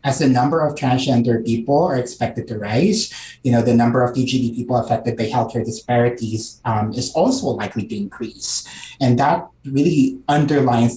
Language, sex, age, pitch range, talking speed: English, male, 30-49, 115-135 Hz, 170 wpm